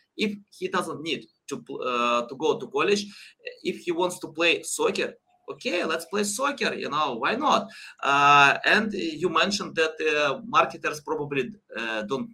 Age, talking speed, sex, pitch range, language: 20-39, 165 wpm, male, 130-205 Hz, English